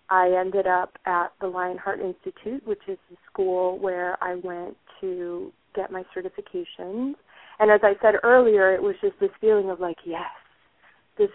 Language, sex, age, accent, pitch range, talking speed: English, female, 30-49, American, 180-225 Hz, 170 wpm